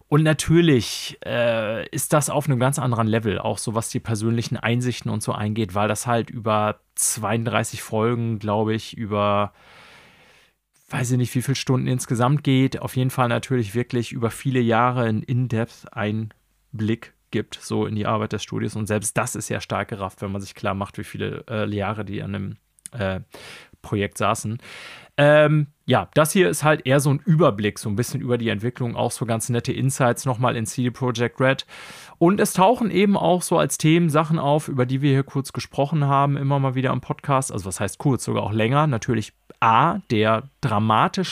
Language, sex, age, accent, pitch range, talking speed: German, male, 30-49, German, 110-140 Hz, 200 wpm